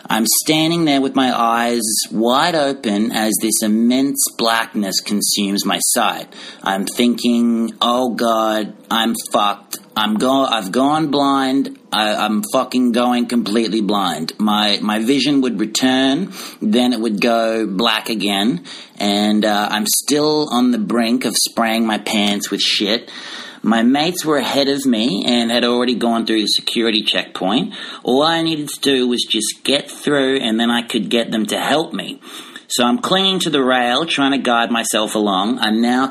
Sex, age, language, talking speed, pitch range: male, 40-59, English, 170 wpm, 110-135 Hz